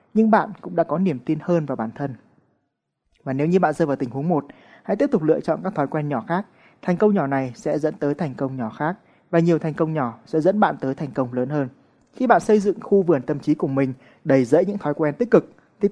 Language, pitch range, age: Vietnamese, 140-190 Hz, 20-39